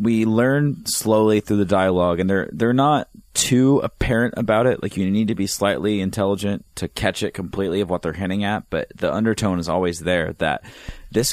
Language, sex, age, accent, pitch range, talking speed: English, male, 30-49, American, 85-105 Hz, 200 wpm